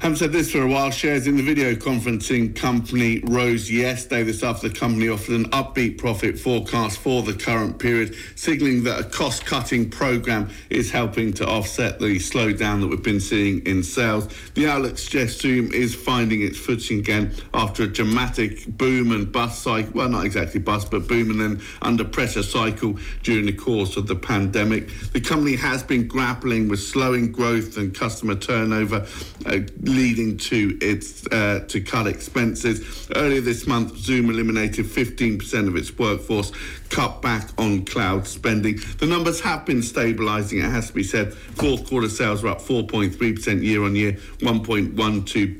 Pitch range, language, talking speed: 105-125 Hz, English, 165 wpm